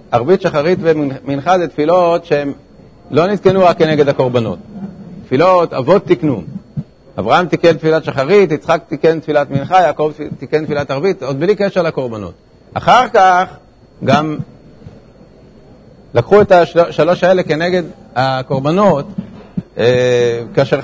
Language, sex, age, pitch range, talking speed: Hebrew, male, 50-69, 140-175 Hz, 115 wpm